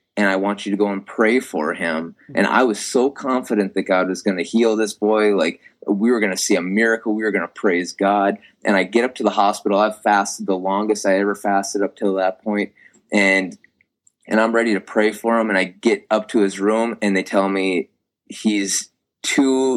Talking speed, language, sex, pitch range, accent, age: 230 wpm, English, male, 90-105 Hz, American, 20-39